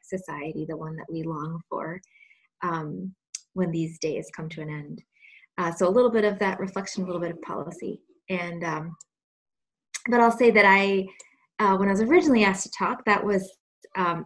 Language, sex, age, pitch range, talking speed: English, female, 20-39, 175-205 Hz, 195 wpm